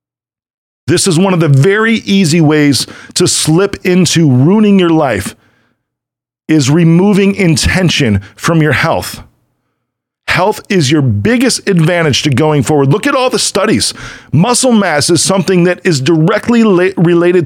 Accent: American